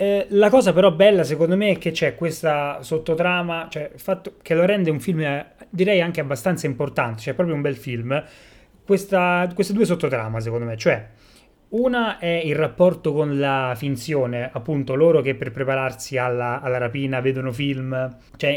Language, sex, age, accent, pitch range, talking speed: Italian, male, 30-49, native, 130-160 Hz, 180 wpm